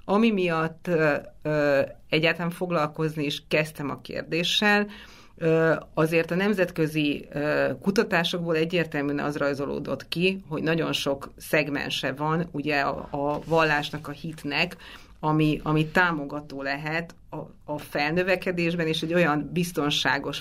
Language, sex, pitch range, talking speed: Hungarian, female, 145-180 Hz, 110 wpm